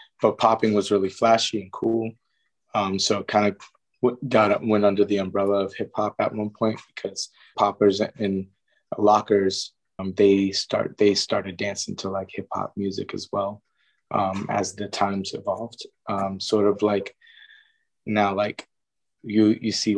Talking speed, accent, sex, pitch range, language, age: 160 wpm, American, male, 100-110 Hz, English, 20-39